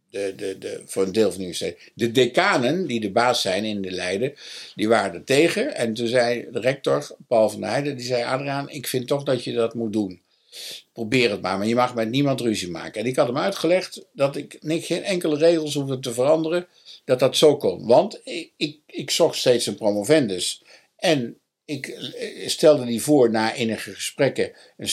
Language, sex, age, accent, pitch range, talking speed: Dutch, male, 60-79, Dutch, 105-140 Hz, 215 wpm